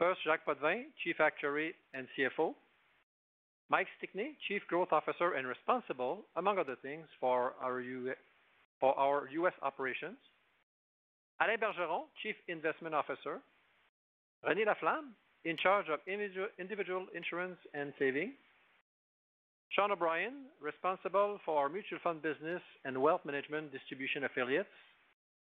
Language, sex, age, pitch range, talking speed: English, male, 50-69, 140-185 Hz, 115 wpm